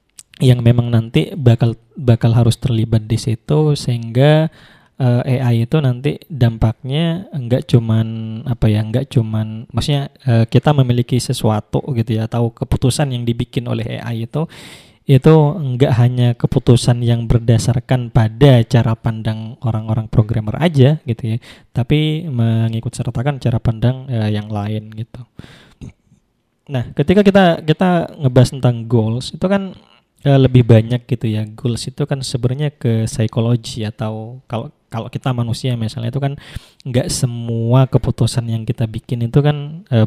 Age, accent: 20-39, native